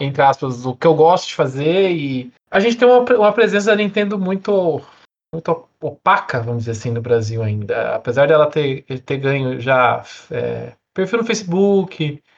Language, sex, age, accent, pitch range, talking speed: Portuguese, male, 20-39, Brazilian, 155-220 Hz, 175 wpm